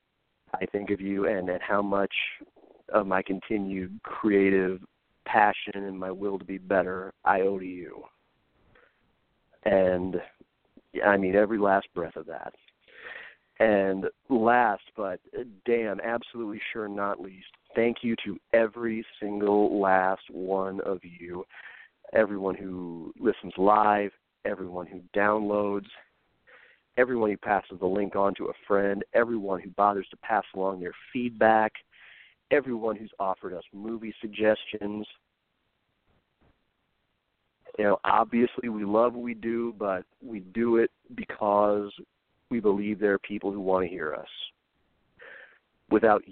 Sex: male